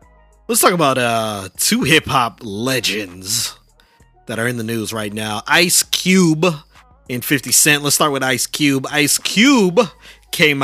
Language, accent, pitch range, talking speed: English, American, 115-150 Hz, 150 wpm